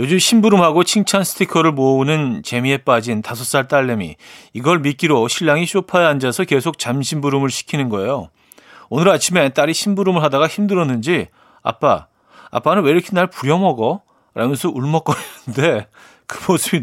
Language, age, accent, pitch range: Korean, 40-59, native, 125-180 Hz